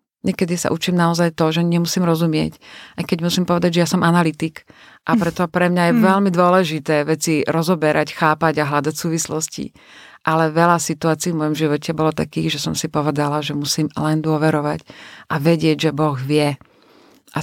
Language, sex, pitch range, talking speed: Slovak, female, 155-175 Hz, 175 wpm